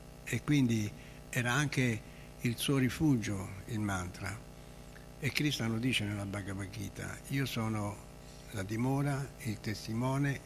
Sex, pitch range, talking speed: male, 105-130 Hz, 125 wpm